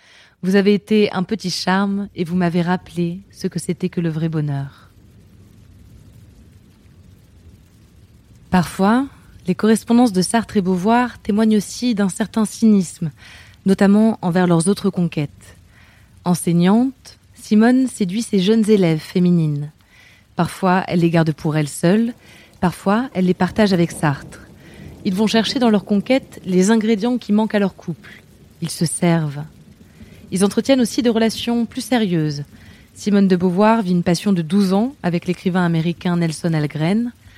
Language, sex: French, female